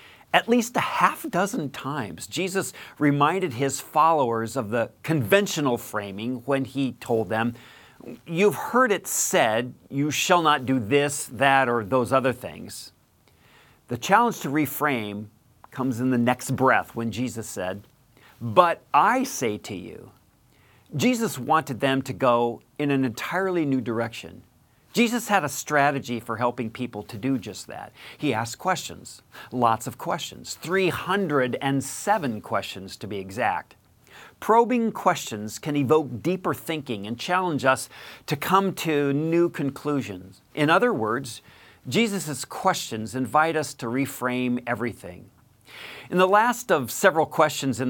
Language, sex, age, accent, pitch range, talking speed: English, male, 50-69, American, 120-155 Hz, 140 wpm